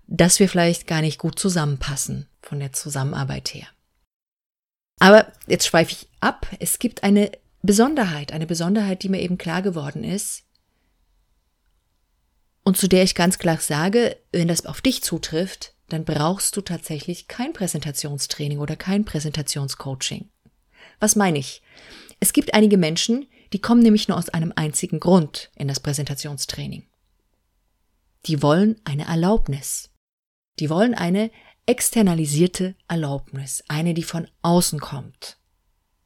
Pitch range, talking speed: 150-200 Hz, 135 wpm